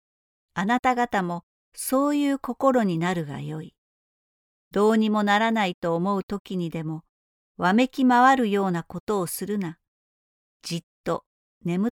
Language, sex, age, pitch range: Japanese, female, 50-69, 170-230 Hz